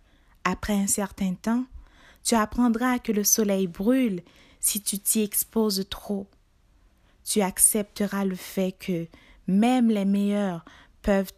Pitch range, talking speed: 165-210 Hz, 125 wpm